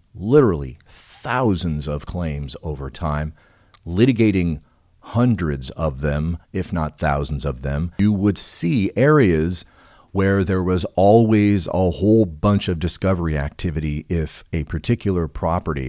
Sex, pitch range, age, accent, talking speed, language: male, 75-100 Hz, 40-59, American, 125 wpm, English